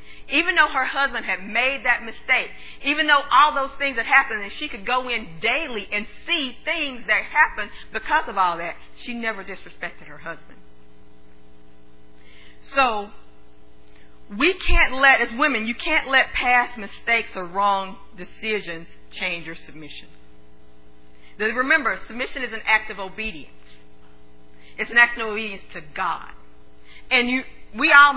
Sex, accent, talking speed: female, American, 150 wpm